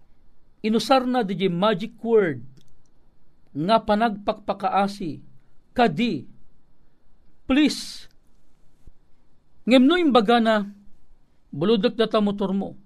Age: 50-69